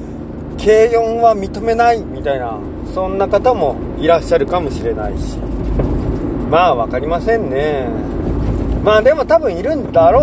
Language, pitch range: Japanese, 155-235 Hz